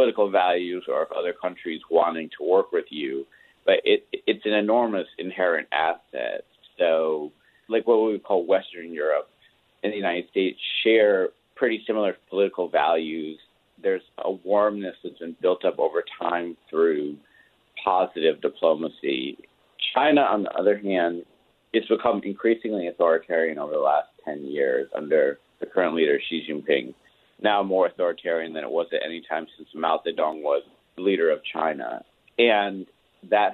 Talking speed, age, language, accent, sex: 155 wpm, 40-59, English, American, male